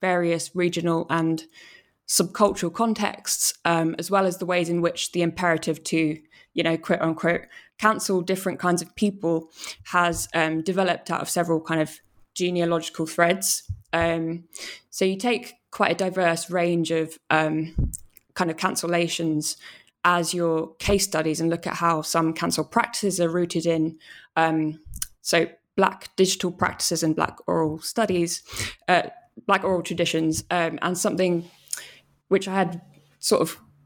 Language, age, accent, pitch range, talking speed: English, 20-39, British, 160-185 Hz, 145 wpm